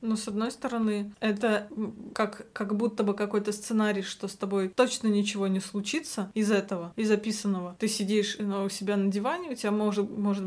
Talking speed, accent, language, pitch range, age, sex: 185 wpm, native, Russian, 200-225 Hz, 20-39, female